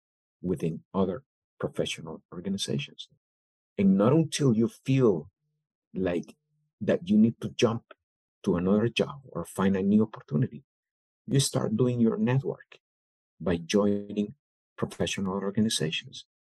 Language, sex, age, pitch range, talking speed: English, male, 50-69, 100-130 Hz, 115 wpm